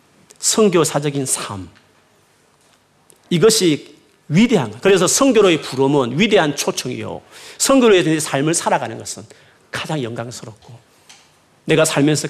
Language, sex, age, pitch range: Korean, male, 40-59, 135-200 Hz